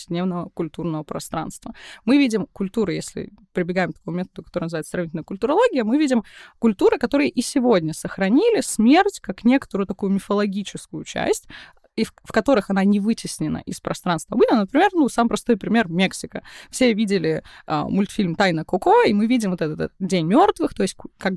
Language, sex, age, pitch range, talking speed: Russian, female, 20-39, 190-250 Hz, 175 wpm